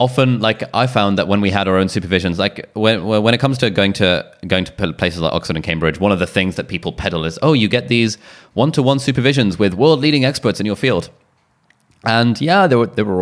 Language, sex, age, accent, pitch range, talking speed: English, male, 20-39, British, 90-115 Hz, 235 wpm